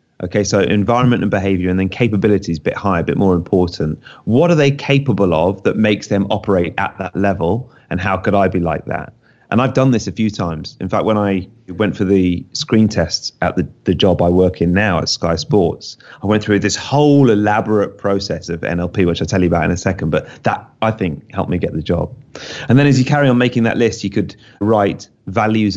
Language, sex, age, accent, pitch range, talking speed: English, male, 30-49, British, 90-115 Hz, 235 wpm